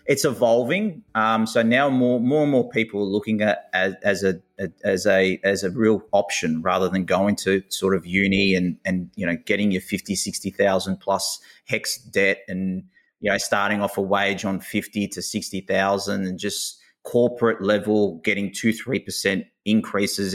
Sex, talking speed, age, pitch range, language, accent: male, 175 wpm, 30-49, 95-110 Hz, English, Australian